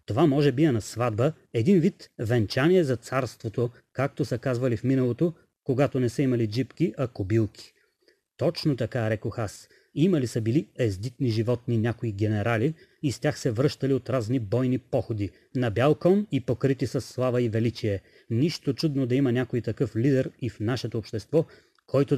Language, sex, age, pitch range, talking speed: Bulgarian, male, 30-49, 120-150 Hz, 175 wpm